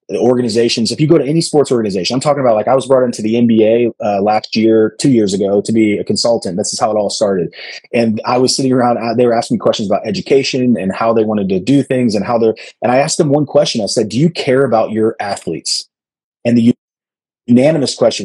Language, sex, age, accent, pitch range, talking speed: English, male, 30-49, American, 105-130 Hz, 245 wpm